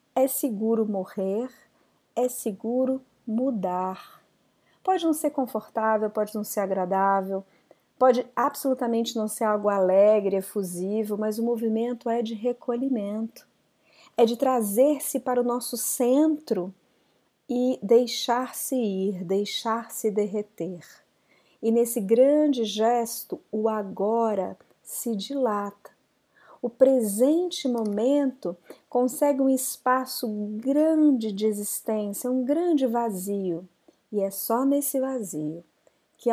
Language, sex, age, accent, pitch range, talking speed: Portuguese, female, 40-59, Brazilian, 210-255 Hz, 105 wpm